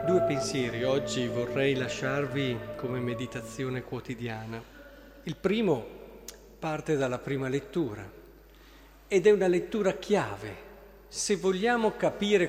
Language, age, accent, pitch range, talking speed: Italian, 40-59, native, 130-180 Hz, 105 wpm